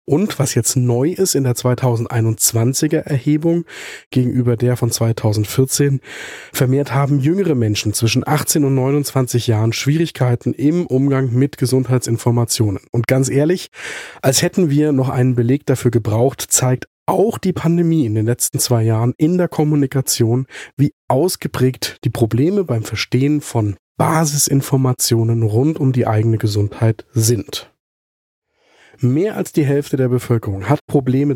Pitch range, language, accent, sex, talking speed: 115-145 Hz, German, German, male, 140 wpm